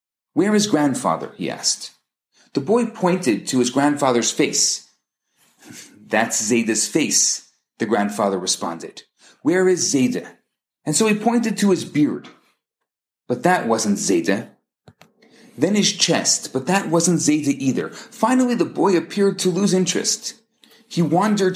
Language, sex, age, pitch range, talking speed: English, male, 40-59, 160-225 Hz, 135 wpm